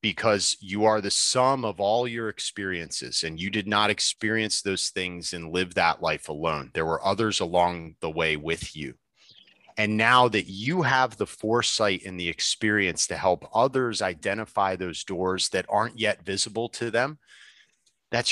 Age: 30-49